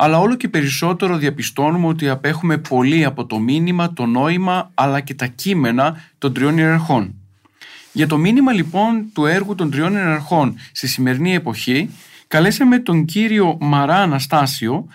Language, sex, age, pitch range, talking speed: Greek, male, 40-59, 130-170 Hz, 150 wpm